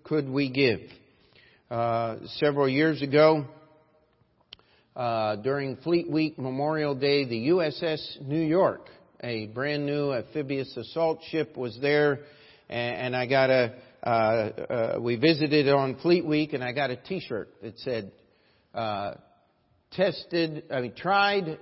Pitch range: 125-155 Hz